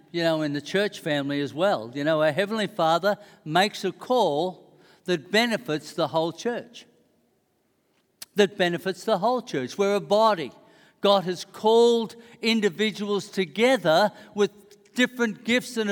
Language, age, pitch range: English, 60-79, 195-250 Hz